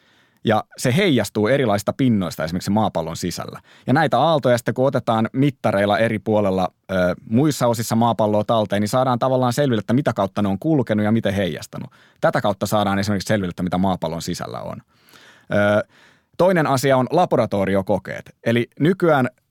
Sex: male